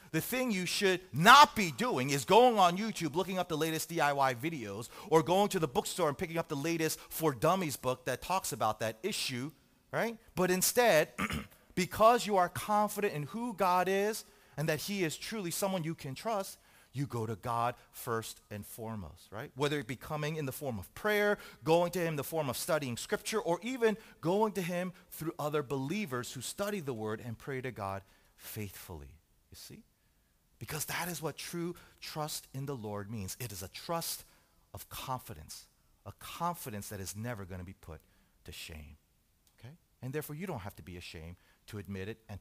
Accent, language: American, English